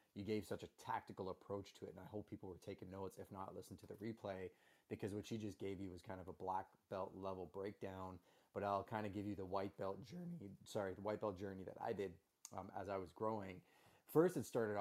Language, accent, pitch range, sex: English, American, 95-105 Hz, male